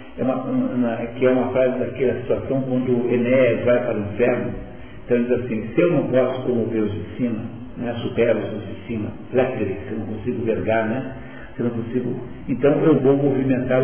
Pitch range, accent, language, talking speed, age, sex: 120-150 Hz, Brazilian, Portuguese, 210 wpm, 60-79, male